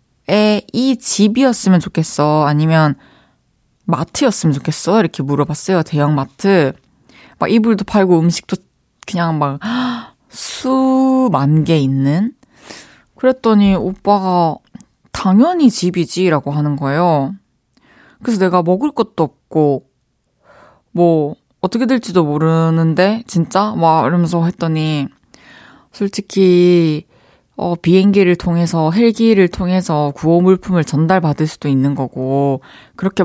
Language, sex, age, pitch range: Korean, female, 20-39, 150-205 Hz